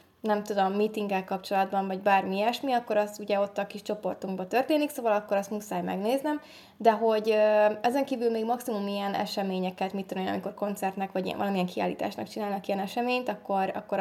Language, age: Hungarian, 20-39